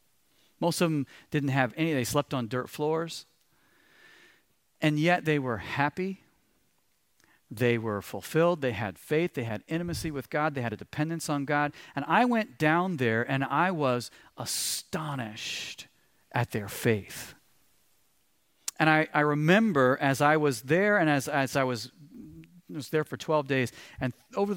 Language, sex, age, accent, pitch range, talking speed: English, male, 40-59, American, 130-170 Hz, 160 wpm